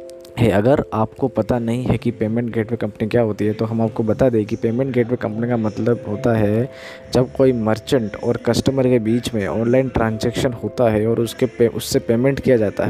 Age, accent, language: 20-39, native, Hindi